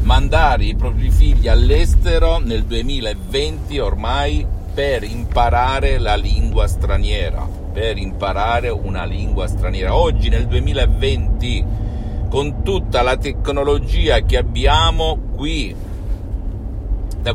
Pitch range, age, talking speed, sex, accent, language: 85-120 Hz, 50-69, 100 wpm, male, native, Italian